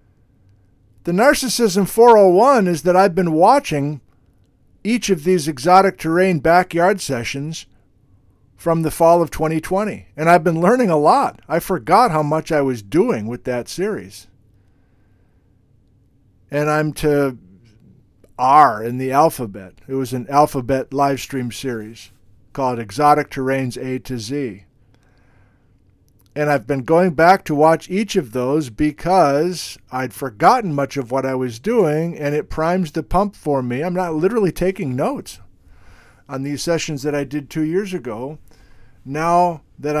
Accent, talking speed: American, 145 wpm